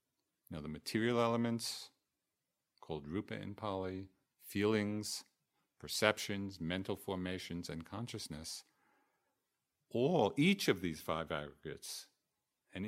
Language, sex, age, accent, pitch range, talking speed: English, male, 50-69, American, 85-115 Hz, 100 wpm